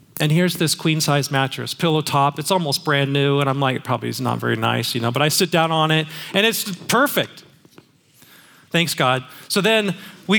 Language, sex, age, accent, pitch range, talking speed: English, male, 30-49, American, 155-205 Hz, 210 wpm